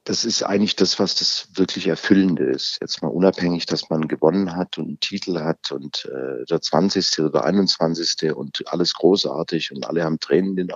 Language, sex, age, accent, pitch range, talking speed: German, male, 50-69, German, 85-105 Hz, 195 wpm